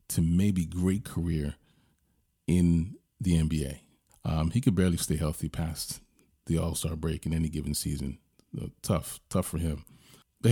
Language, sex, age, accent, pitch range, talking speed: English, male, 40-59, American, 80-95 Hz, 150 wpm